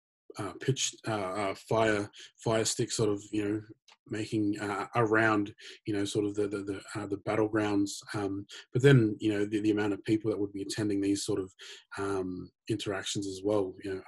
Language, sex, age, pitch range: English, male, 20-39, 95-105 Hz